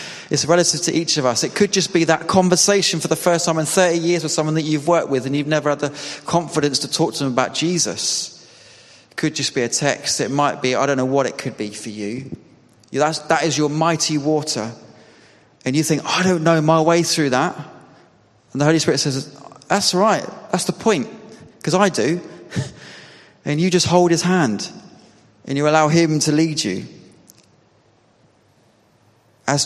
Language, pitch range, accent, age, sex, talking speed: English, 140-170 Hz, British, 20-39, male, 200 wpm